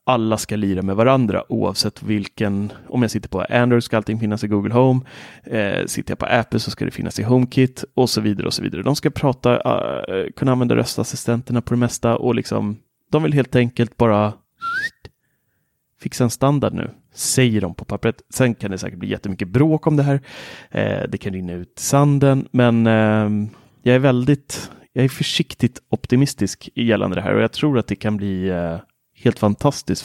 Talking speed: 200 wpm